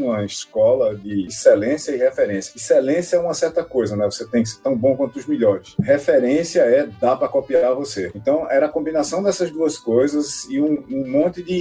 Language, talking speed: Portuguese, 200 wpm